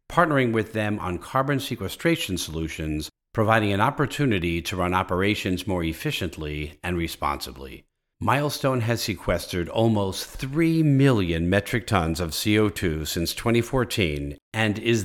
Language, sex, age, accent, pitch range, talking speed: English, male, 50-69, American, 85-120 Hz, 125 wpm